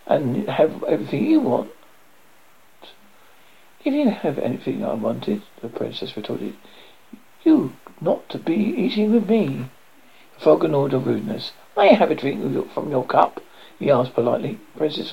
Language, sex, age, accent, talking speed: English, male, 60-79, British, 155 wpm